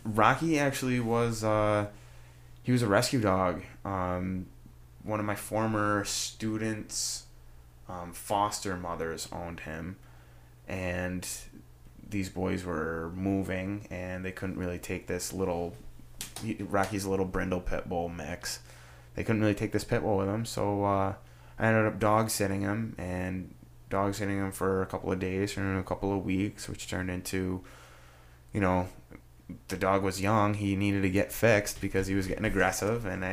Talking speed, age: 160 wpm, 20-39